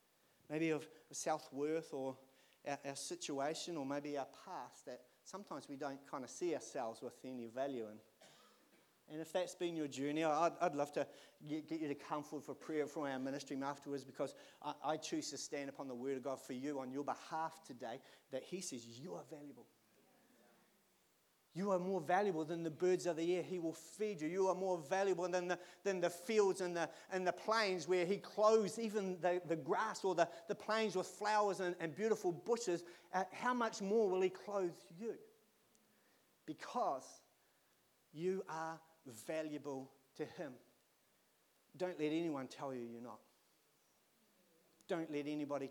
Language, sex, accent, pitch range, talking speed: English, male, Australian, 140-180 Hz, 175 wpm